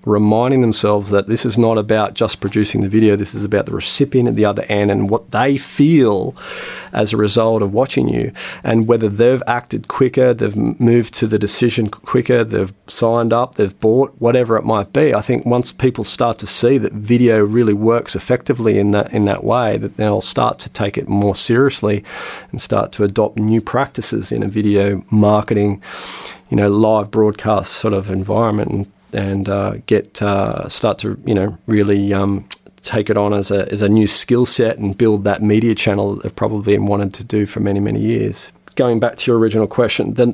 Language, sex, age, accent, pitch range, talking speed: English, male, 40-59, Australian, 105-120 Hz, 200 wpm